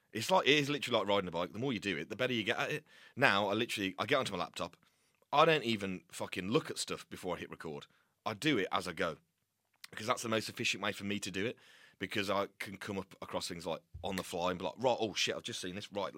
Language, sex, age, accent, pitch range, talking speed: English, male, 30-49, British, 95-125 Hz, 290 wpm